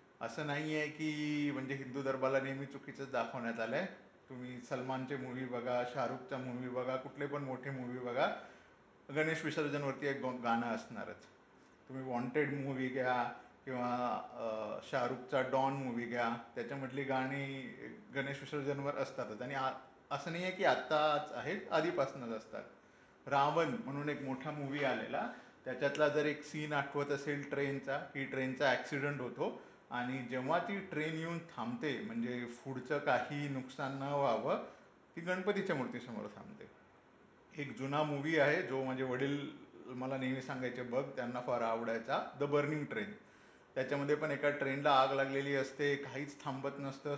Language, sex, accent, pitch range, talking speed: Marathi, male, native, 130-145 Hz, 140 wpm